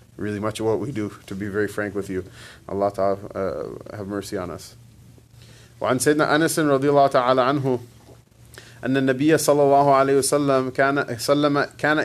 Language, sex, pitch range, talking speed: English, male, 120-145 Hz, 145 wpm